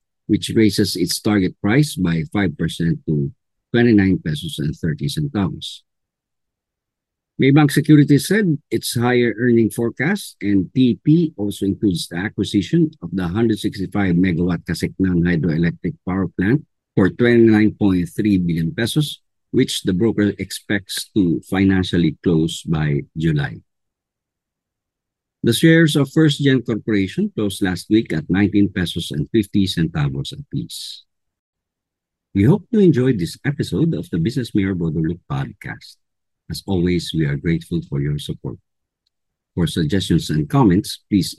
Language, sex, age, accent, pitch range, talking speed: English, male, 50-69, Filipino, 85-130 Hz, 125 wpm